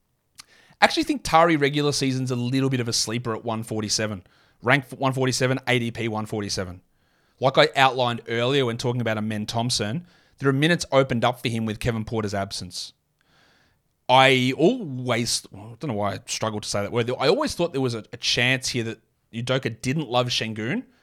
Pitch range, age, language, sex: 110-140 Hz, 30-49, English, male